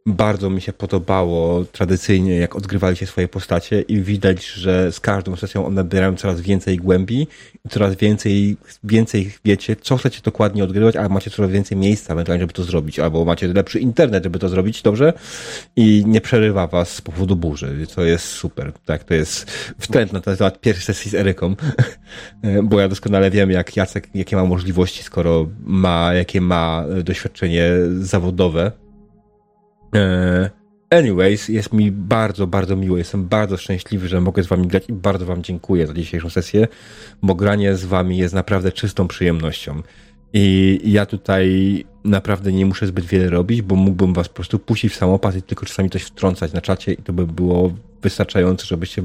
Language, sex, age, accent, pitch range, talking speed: Polish, male, 30-49, native, 90-105 Hz, 170 wpm